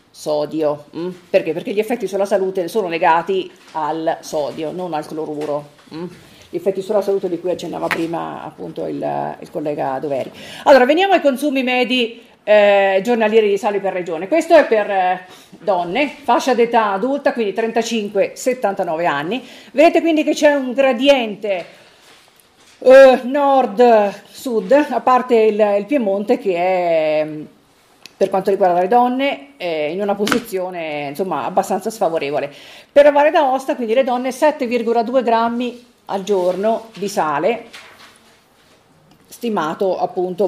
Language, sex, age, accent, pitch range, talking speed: Italian, female, 40-59, native, 180-250 Hz, 135 wpm